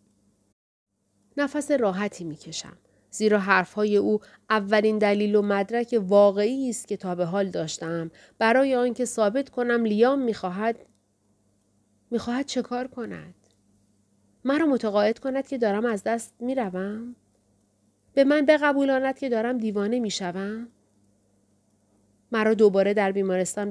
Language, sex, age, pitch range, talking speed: Persian, female, 30-49, 160-245 Hz, 120 wpm